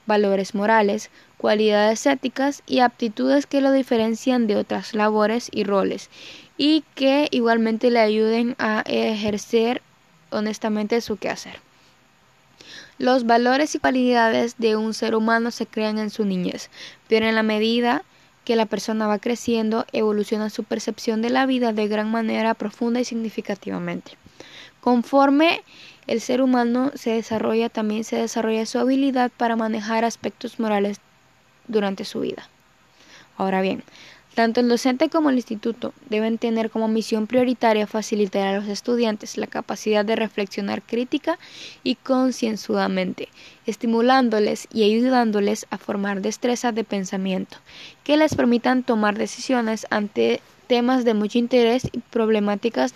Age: 10-29